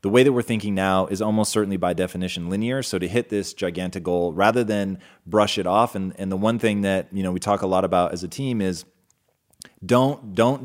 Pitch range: 95-115 Hz